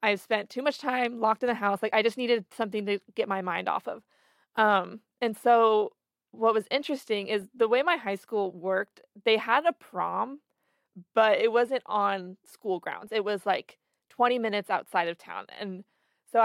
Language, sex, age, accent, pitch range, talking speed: English, female, 20-39, American, 195-235 Hz, 195 wpm